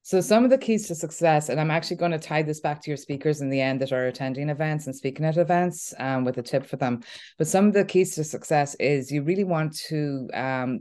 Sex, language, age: female, English, 20-39